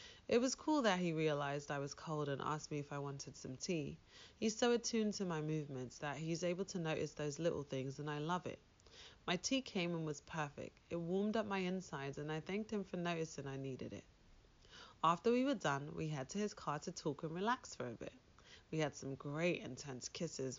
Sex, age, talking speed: female, 30-49, 225 wpm